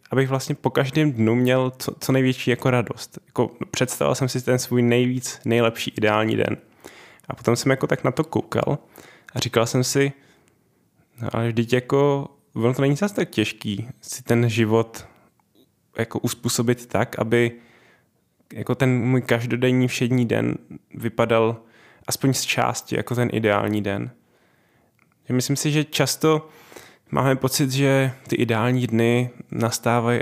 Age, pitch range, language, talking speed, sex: 10-29, 115-130 Hz, Czech, 145 wpm, male